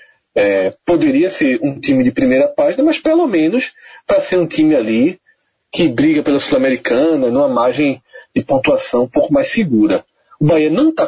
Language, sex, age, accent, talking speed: Portuguese, male, 40-59, Brazilian, 175 wpm